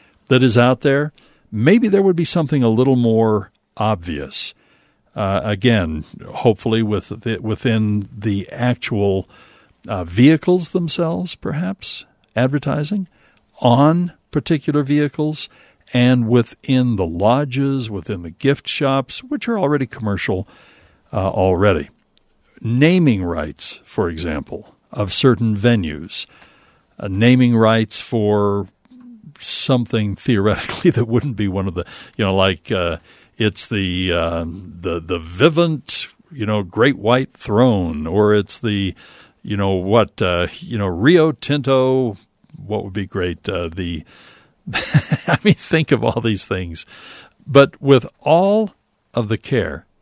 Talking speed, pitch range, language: 130 wpm, 100-140 Hz, English